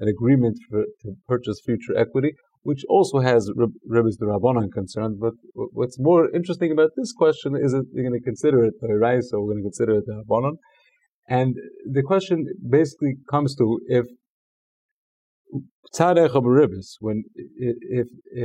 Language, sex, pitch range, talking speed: English, male, 110-140 Hz, 165 wpm